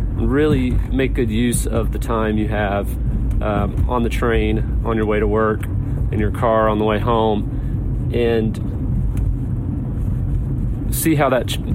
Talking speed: 155 wpm